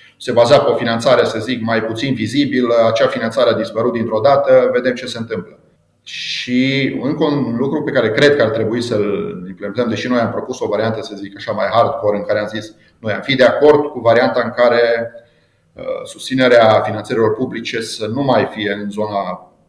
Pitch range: 110-145 Hz